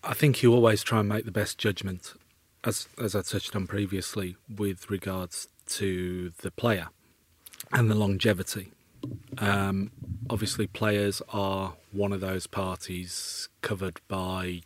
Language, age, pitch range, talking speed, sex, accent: English, 30-49, 95-110 Hz, 140 wpm, male, British